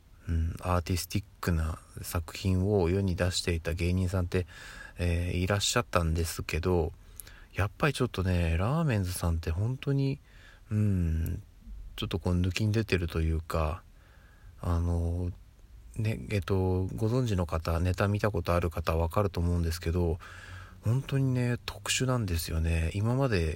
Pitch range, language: 85-105 Hz, Japanese